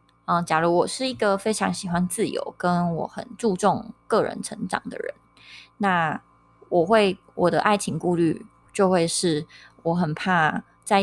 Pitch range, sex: 160-205 Hz, female